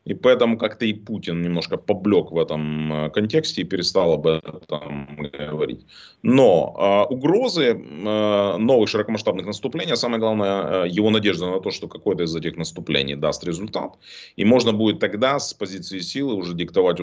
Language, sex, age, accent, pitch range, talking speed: Russian, male, 30-49, native, 80-110 Hz, 160 wpm